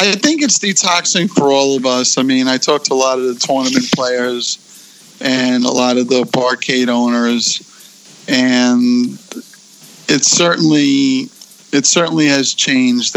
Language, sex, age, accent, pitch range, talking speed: English, male, 50-69, American, 125-170 Hz, 150 wpm